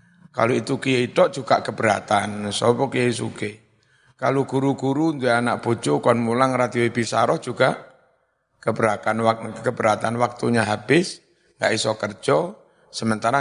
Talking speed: 115 wpm